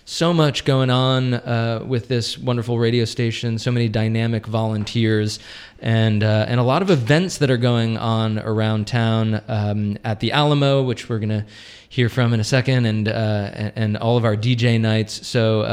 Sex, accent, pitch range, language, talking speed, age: male, American, 110-130 Hz, English, 190 wpm, 20-39